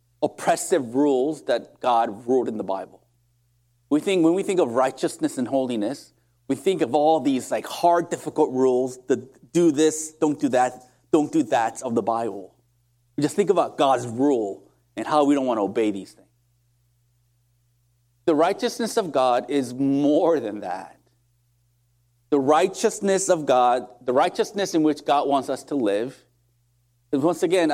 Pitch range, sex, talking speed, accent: 120-165 Hz, male, 165 wpm, American